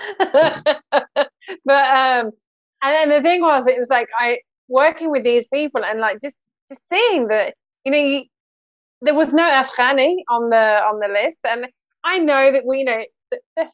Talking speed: 185 wpm